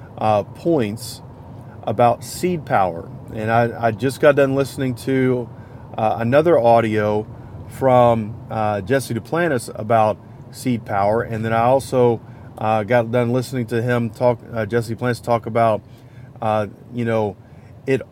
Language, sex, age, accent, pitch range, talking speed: English, male, 40-59, American, 115-135 Hz, 140 wpm